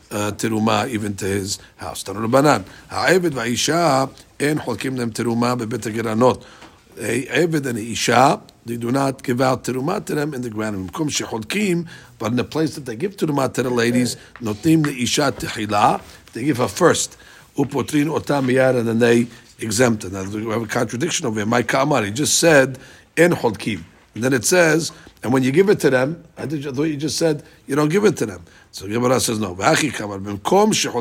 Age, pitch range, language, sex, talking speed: 50-69, 115-150 Hz, English, male, 145 wpm